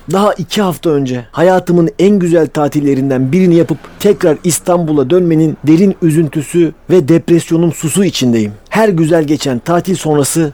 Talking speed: 135 wpm